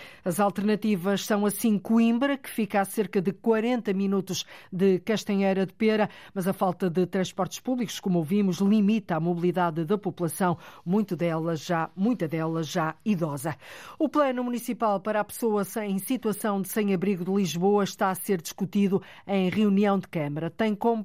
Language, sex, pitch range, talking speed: Portuguese, female, 180-210 Hz, 165 wpm